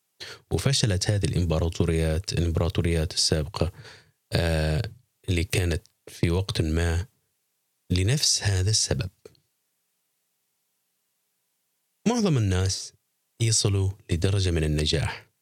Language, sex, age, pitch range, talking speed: Arabic, male, 30-49, 80-110 Hz, 80 wpm